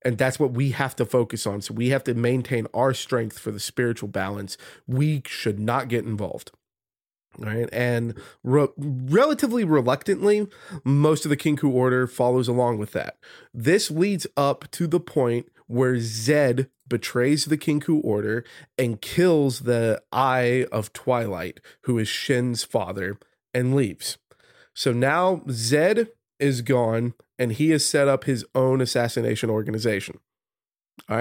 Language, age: English, 30-49